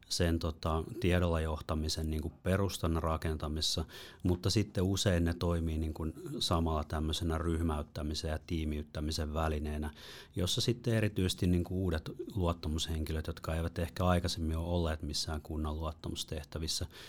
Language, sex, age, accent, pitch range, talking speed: Finnish, male, 30-49, native, 75-85 Hz, 120 wpm